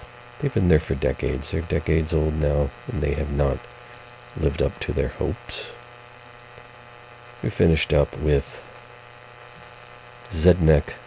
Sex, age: male, 50-69